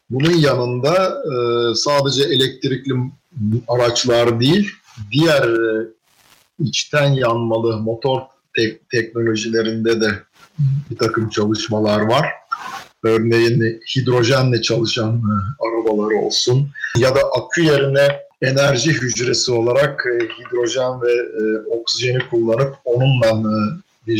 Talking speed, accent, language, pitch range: 85 wpm, native, Turkish, 110-135 Hz